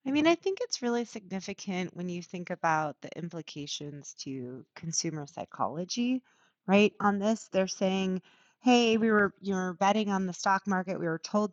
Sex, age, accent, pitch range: female, 30-49, American, 165-205 Hz